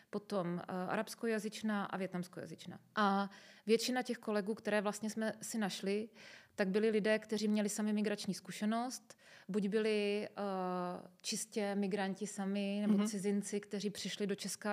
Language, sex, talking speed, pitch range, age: Czech, female, 140 wpm, 190-205 Hz, 30-49